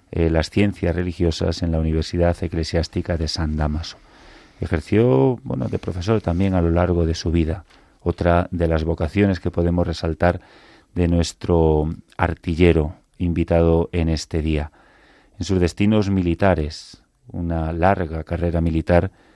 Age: 40-59